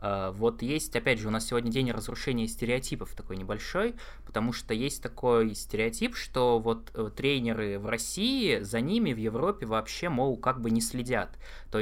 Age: 20-39